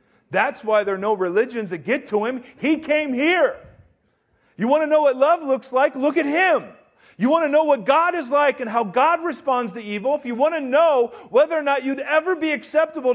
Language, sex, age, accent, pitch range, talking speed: English, male, 40-59, American, 235-315 Hz, 230 wpm